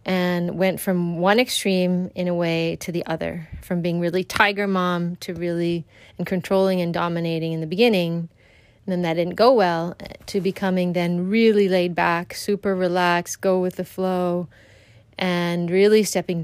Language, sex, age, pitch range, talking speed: English, female, 30-49, 170-200 Hz, 165 wpm